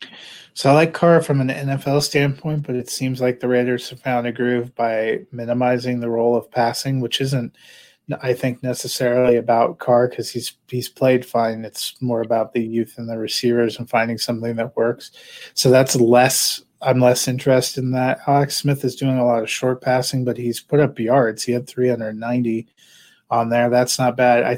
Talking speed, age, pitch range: 195 wpm, 30-49, 120-135 Hz